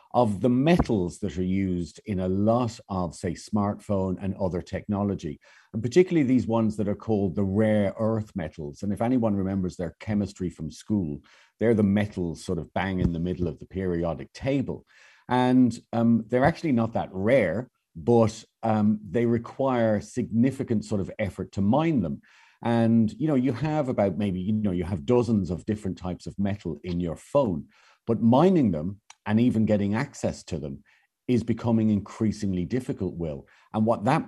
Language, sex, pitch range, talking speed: English, male, 90-115 Hz, 180 wpm